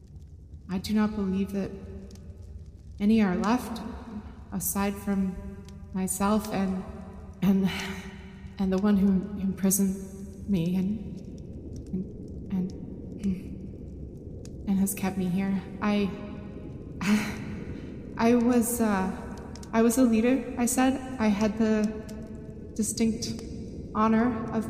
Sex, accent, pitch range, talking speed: female, American, 195-225 Hz, 105 wpm